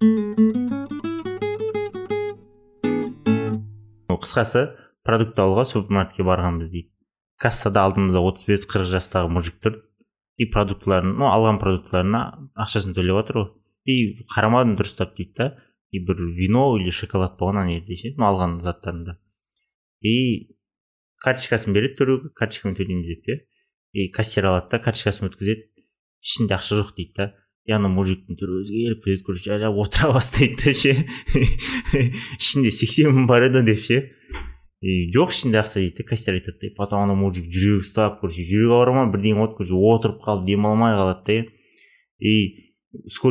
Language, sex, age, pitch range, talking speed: Russian, male, 30-49, 95-115 Hz, 50 wpm